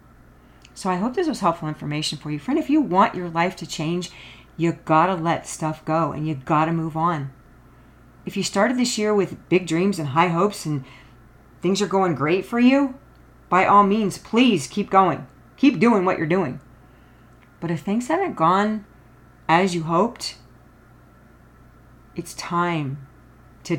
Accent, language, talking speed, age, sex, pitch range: American, English, 175 wpm, 40-59, female, 155-200 Hz